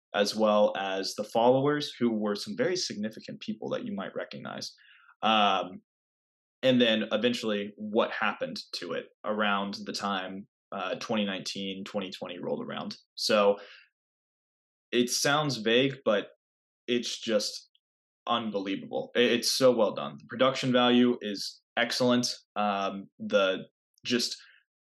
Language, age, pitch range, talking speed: English, 20-39, 100-130 Hz, 125 wpm